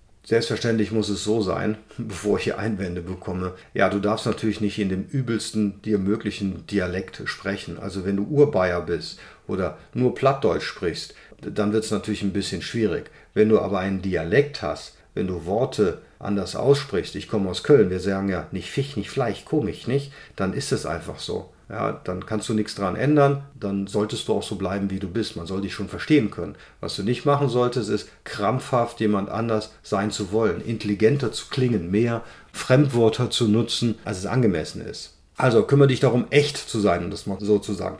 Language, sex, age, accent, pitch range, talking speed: German, male, 40-59, German, 100-120 Hz, 195 wpm